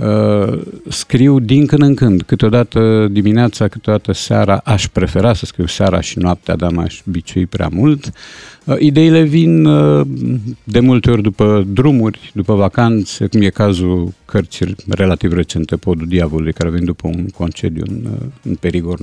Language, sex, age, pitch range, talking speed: Romanian, male, 50-69, 90-120 Hz, 155 wpm